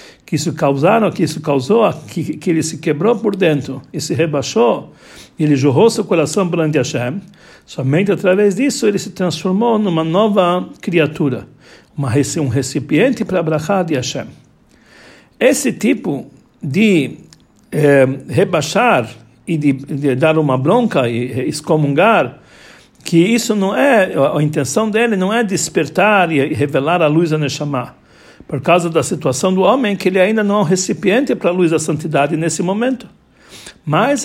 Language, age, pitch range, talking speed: Portuguese, 60-79, 145-200 Hz, 160 wpm